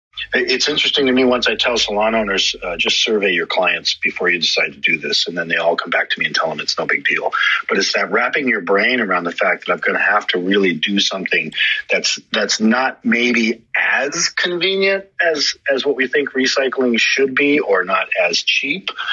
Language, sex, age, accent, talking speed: English, male, 40-59, American, 225 wpm